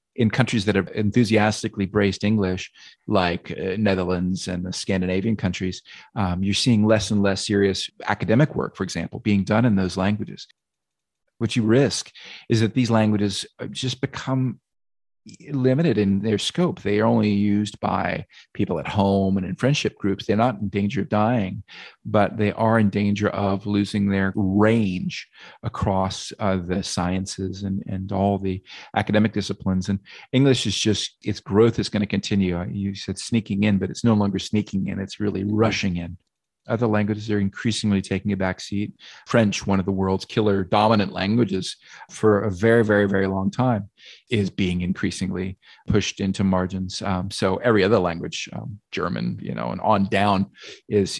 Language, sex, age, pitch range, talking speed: English, male, 40-59, 95-110 Hz, 170 wpm